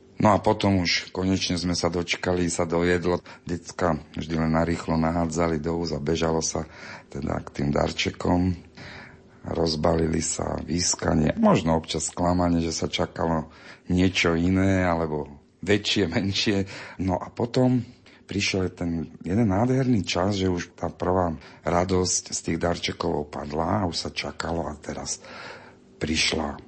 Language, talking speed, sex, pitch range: Slovak, 135 wpm, male, 80-90 Hz